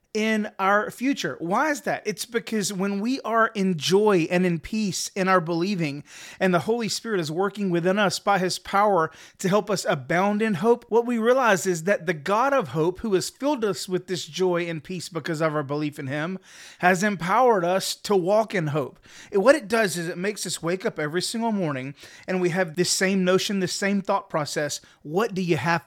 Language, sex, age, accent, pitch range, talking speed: English, male, 30-49, American, 160-210 Hz, 220 wpm